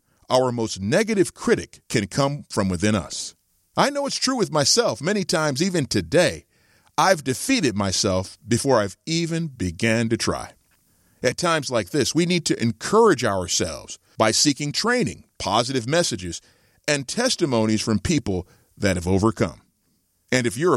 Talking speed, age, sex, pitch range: 150 wpm, 40-59, male, 95-150 Hz